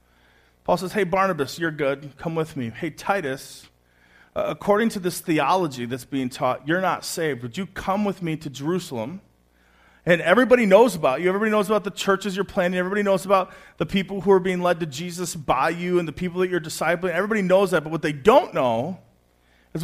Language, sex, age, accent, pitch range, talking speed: English, male, 40-59, American, 160-210 Hz, 210 wpm